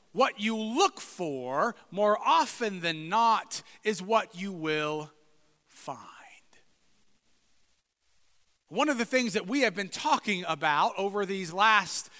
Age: 30-49